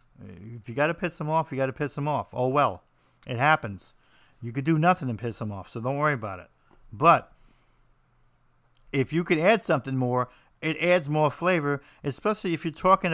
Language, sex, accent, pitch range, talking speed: English, male, American, 135-175 Hz, 205 wpm